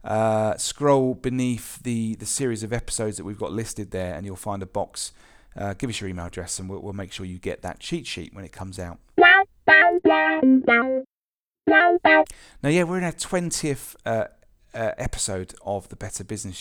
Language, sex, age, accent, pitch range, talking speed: English, male, 40-59, British, 105-135 Hz, 180 wpm